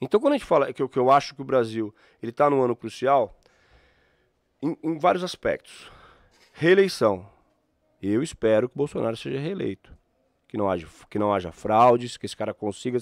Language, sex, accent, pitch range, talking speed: Portuguese, male, Brazilian, 120-180 Hz, 190 wpm